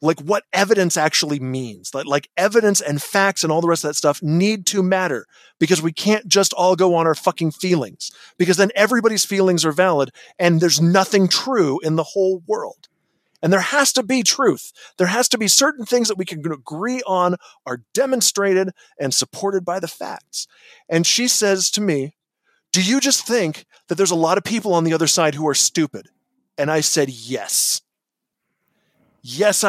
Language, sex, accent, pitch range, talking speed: English, male, American, 160-215 Hz, 195 wpm